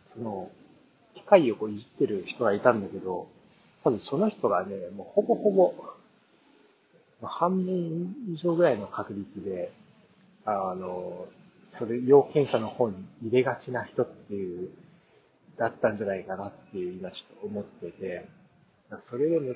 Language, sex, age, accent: Japanese, male, 40-59, native